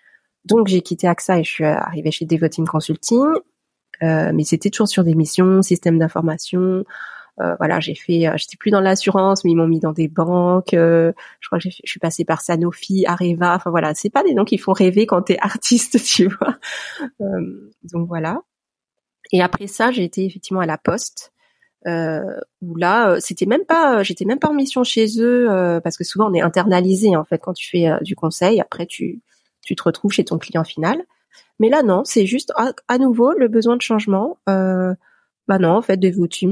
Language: French